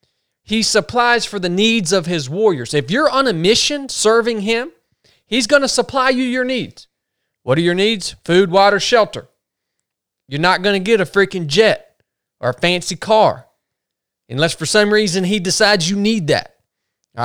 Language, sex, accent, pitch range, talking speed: English, male, American, 165-225 Hz, 175 wpm